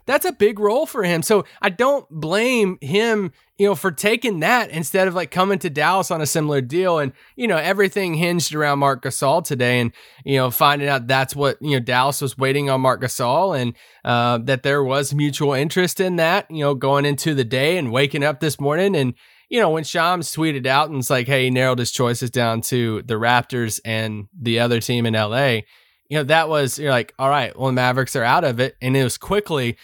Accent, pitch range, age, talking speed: American, 130-180 Hz, 20-39, 230 wpm